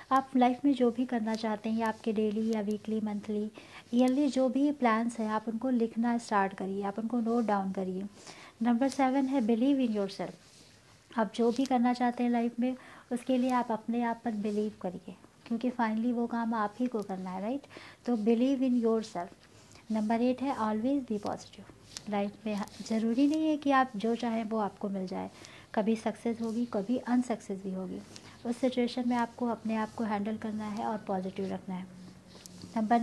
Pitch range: 210-245 Hz